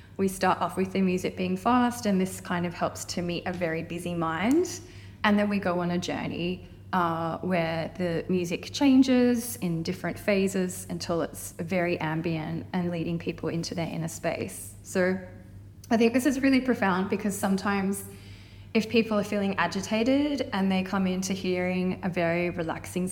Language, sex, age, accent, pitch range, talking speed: English, female, 20-39, Australian, 165-200 Hz, 175 wpm